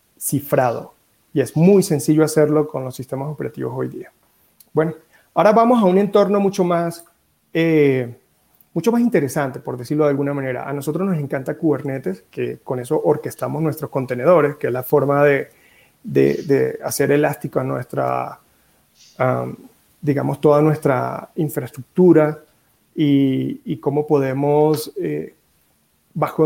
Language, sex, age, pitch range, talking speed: Spanish, male, 30-49, 140-165 Hz, 140 wpm